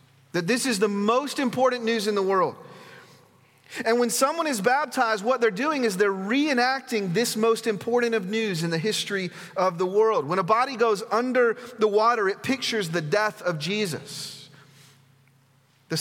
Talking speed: 170 wpm